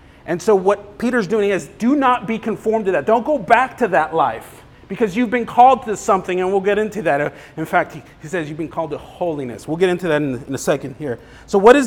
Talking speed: 250 wpm